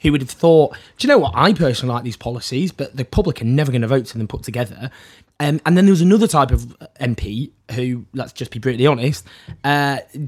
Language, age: English, 20-39